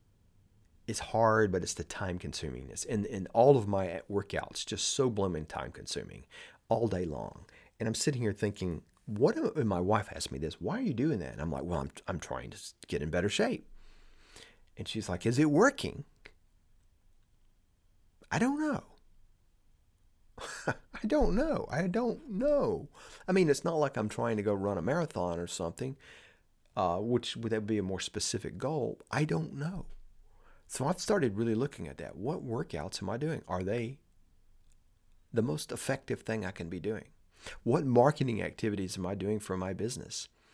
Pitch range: 90-125 Hz